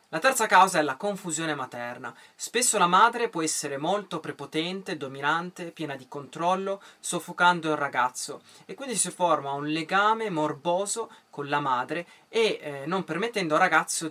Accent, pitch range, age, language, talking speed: native, 150-200 Hz, 20-39, Italian, 155 wpm